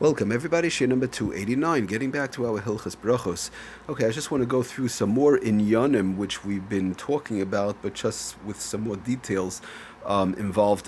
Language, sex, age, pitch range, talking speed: English, male, 40-59, 100-125 Hz, 200 wpm